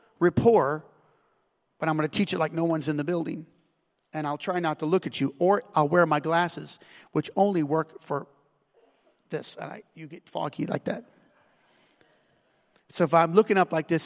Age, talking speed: 40-59, 190 wpm